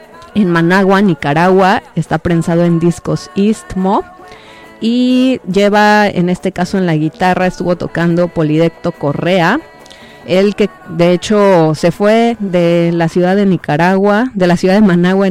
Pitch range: 160-190 Hz